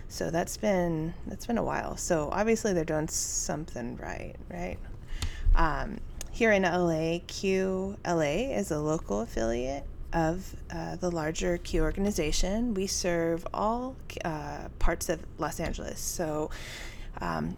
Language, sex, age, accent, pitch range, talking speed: English, female, 20-39, American, 150-180 Hz, 135 wpm